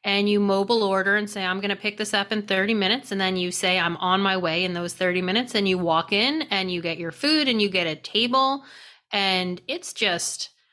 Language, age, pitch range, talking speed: English, 30-49, 190-245 Hz, 245 wpm